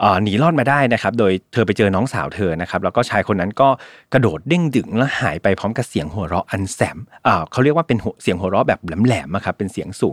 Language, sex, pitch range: Thai, male, 100-135 Hz